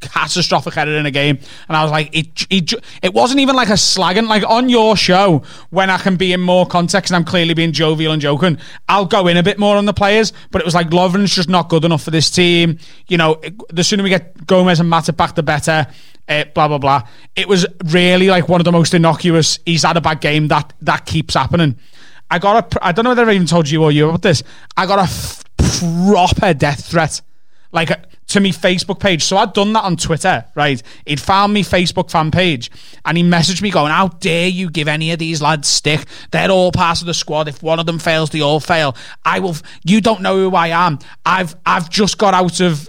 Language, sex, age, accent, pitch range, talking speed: English, male, 30-49, British, 160-190 Hz, 245 wpm